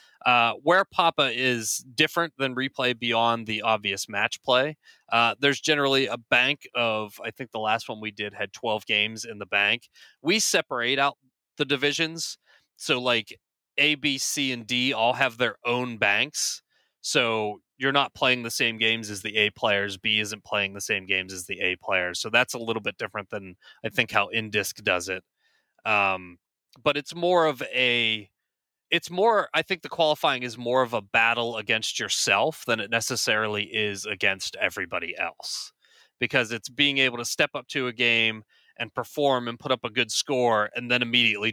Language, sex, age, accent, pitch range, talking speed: English, male, 30-49, American, 105-135 Hz, 185 wpm